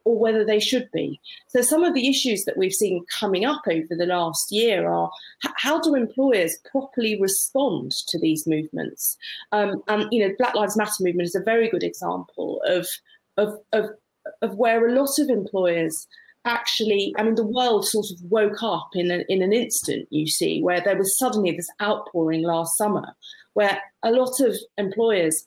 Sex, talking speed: female, 190 wpm